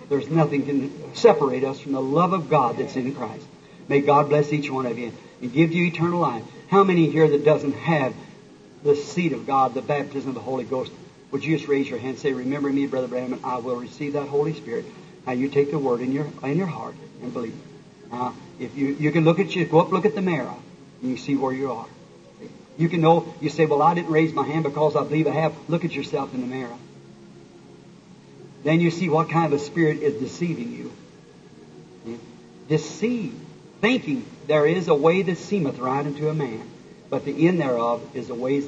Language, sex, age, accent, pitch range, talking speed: English, male, 50-69, American, 135-170 Hz, 225 wpm